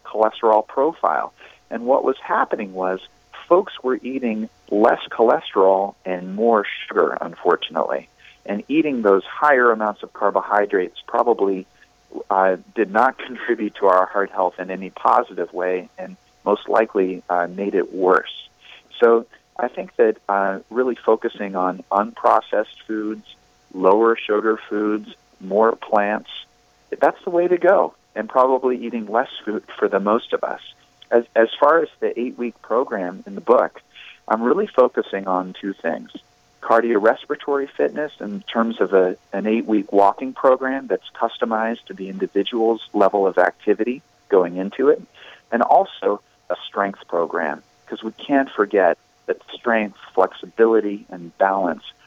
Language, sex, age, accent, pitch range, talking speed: English, male, 40-59, American, 95-120 Hz, 145 wpm